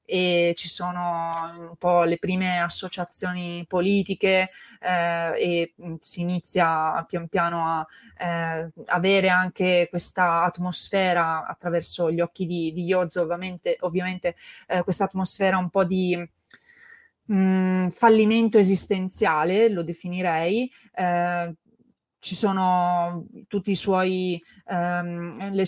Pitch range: 175-200 Hz